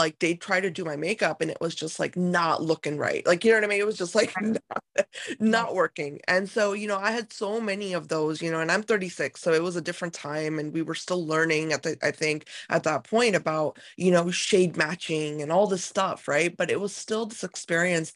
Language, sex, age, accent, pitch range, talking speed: English, female, 20-39, American, 160-195 Hz, 255 wpm